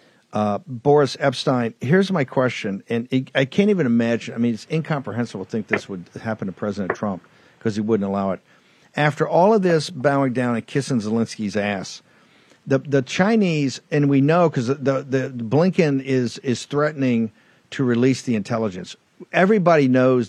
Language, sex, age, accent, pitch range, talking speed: English, male, 50-69, American, 115-145 Hz, 180 wpm